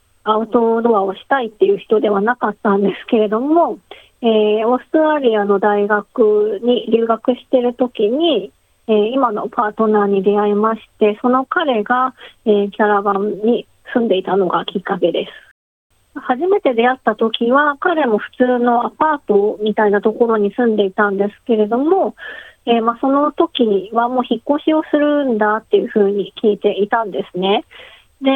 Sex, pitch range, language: female, 210-255 Hz, Japanese